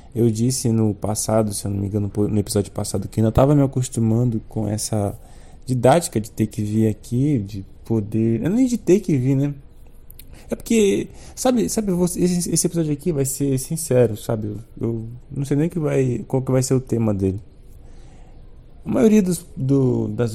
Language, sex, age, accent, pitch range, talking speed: Portuguese, male, 20-39, Brazilian, 110-145 Hz, 190 wpm